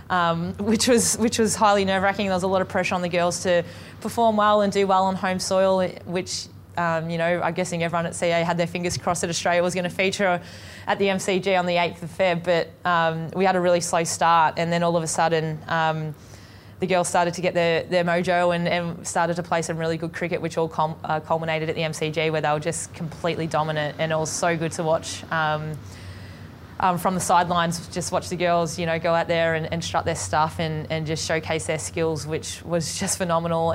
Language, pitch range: English, 160-180 Hz